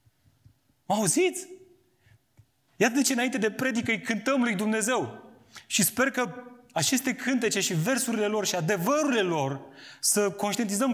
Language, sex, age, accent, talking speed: Romanian, male, 30-49, native, 130 wpm